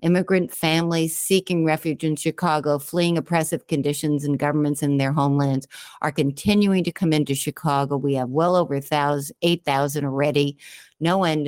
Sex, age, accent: female, 60-79, American